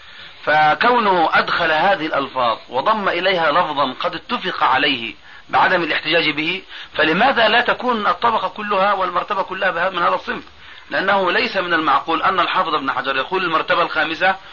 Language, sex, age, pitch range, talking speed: Arabic, male, 30-49, 145-200 Hz, 140 wpm